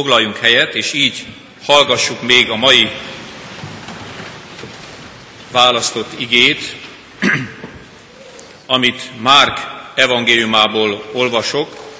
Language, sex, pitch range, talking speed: Hungarian, male, 105-140 Hz, 70 wpm